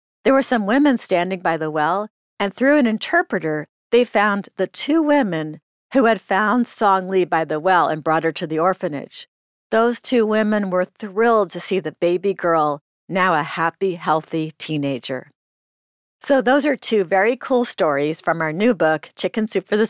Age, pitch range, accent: 50-69, 160-215 Hz, American